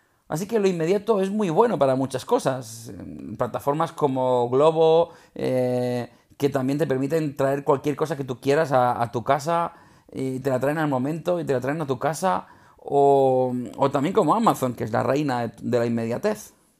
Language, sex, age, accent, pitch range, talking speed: Spanish, male, 30-49, Spanish, 125-170 Hz, 190 wpm